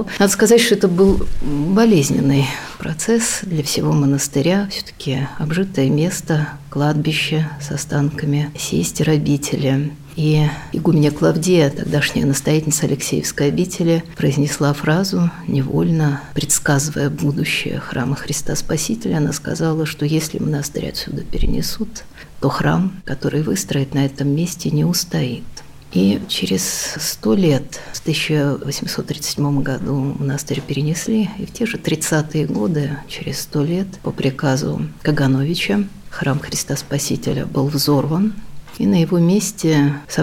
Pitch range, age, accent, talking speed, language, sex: 140-175 Hz, 50-69, native, 120 wpm, Russian, female